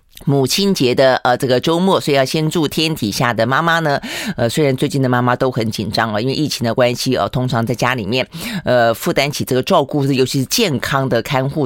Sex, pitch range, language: female, 120-155 Hz, Chinese